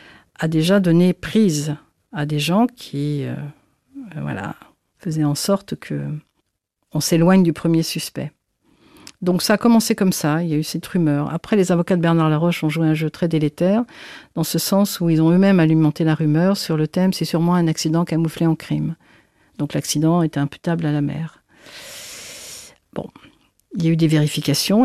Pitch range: 155-190 Hz